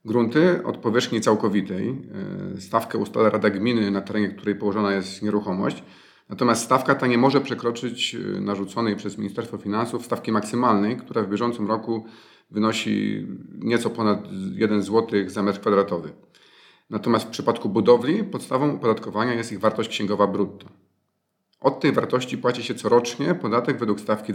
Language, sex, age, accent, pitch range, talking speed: Polish, male, 40-59, native, 100-120 Hz, 145 wpm